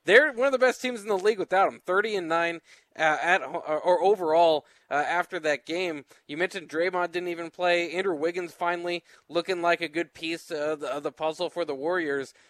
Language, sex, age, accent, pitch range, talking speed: English, male, 20-39, American, 150-180 Hz, 215 wpm